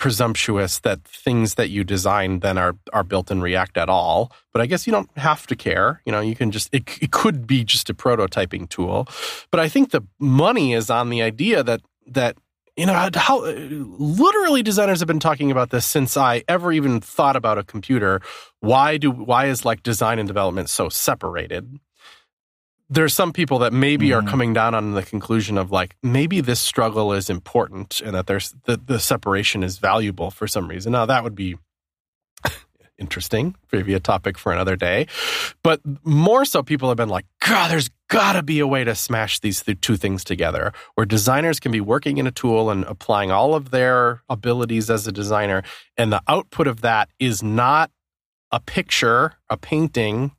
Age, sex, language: 30-49, male, English